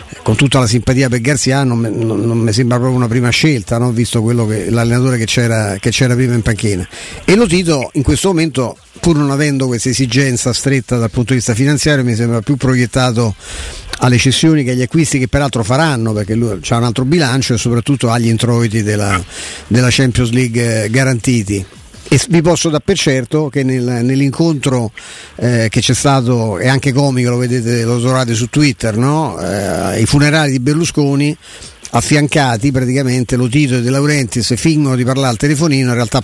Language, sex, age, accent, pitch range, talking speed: Italian, male, 50-69, native, 115-140 Hz, 185 wpm